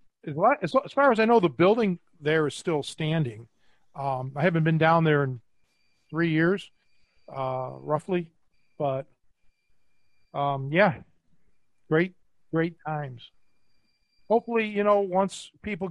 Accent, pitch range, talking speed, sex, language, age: American, 140-185 Hz, 125 wpm, male, English, 40-59